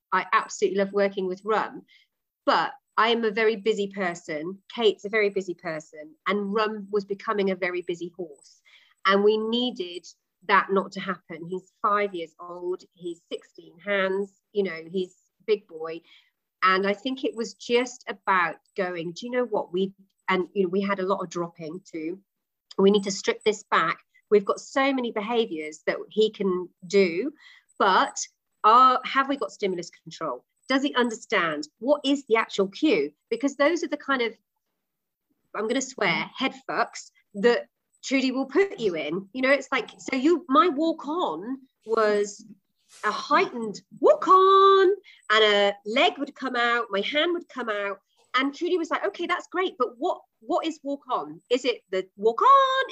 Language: English